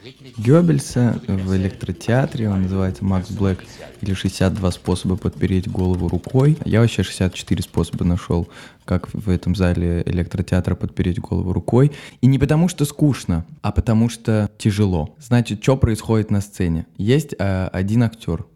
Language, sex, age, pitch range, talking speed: Russian, male, 20-39, 100-125 Hz, 140 wpm